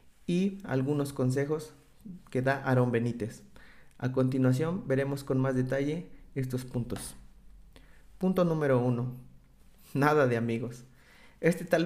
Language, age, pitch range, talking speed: Spanish, 30-49, 130-150 Hz, 115 wpm